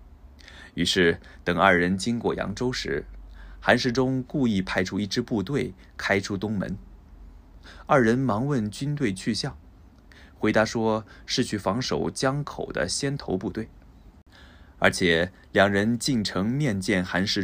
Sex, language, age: male, Japanese, 20-39